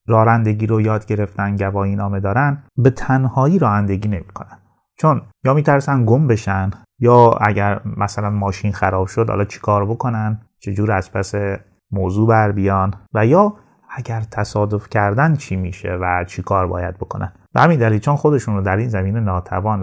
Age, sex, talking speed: 30-49, male, 155 wpm